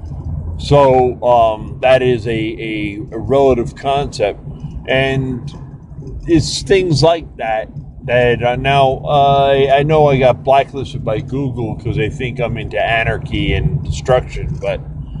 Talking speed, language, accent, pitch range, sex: 140 wpm, English, American, 125-145 Hz, male